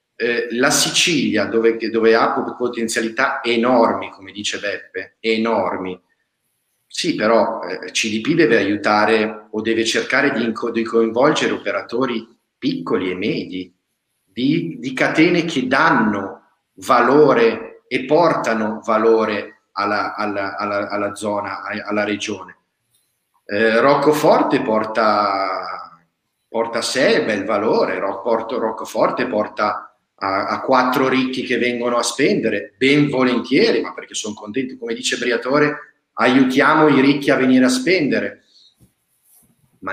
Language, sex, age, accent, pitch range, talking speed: Italian, male, 40-59, native, 105-135 Hz, 120 wpm